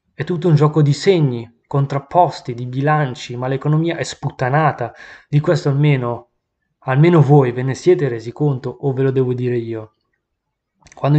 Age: 20-39